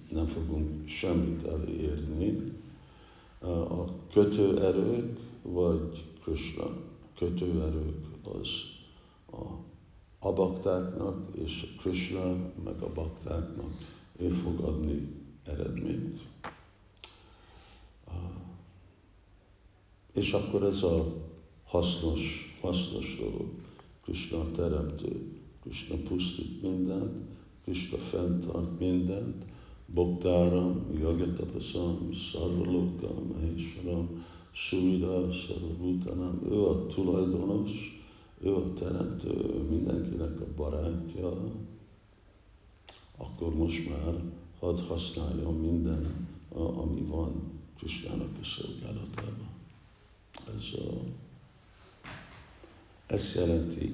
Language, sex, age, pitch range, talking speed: Hungarian, male, 60-79, 80-90 Hz, 80 wpm